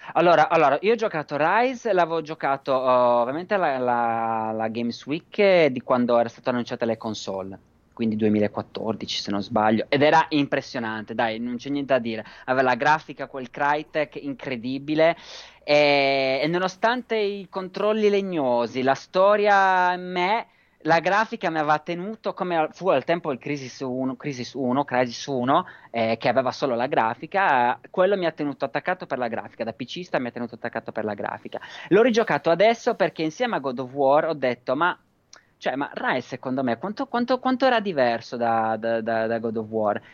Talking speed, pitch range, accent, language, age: 175 wpm, 120-170 Hz, native, Italian, 30-49